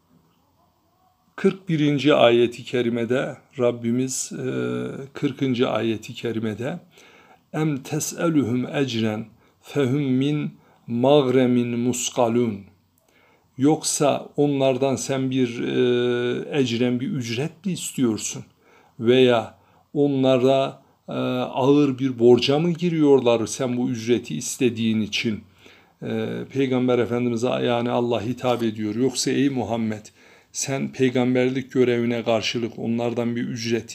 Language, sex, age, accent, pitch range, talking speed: Turkish, male, 60-79, native, 115-130 Hz, 95 wpm